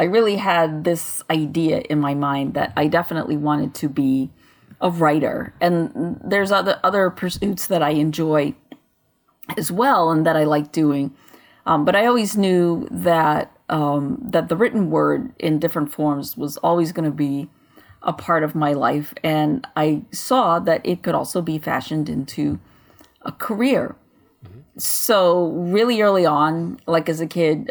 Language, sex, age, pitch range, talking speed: English, female, 30-49, 150-175 Hz, 160 wpm